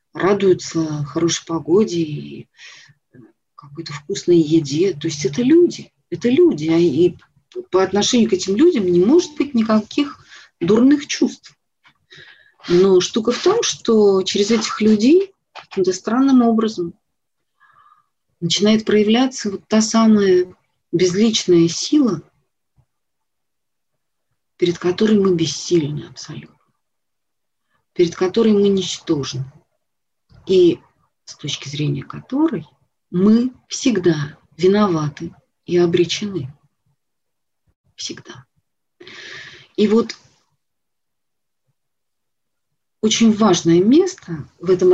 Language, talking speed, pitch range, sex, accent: Russian, 95 wpm, 170-230 Hz, female, native